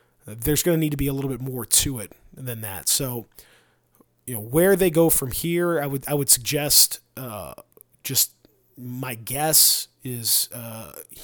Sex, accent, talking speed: male, American, 175 wpm